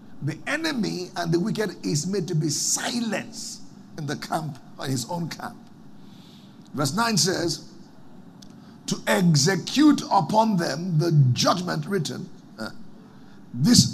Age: 50-69